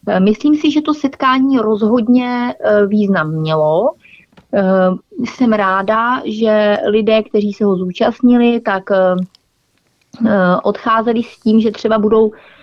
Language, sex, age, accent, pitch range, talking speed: Czech, female, 30-49, native, 195-240 Hz, 110 wpm